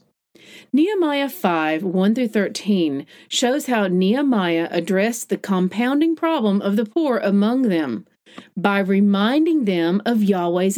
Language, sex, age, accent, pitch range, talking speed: English, female, 40-59, American, 195-275 Hz, 110 wpm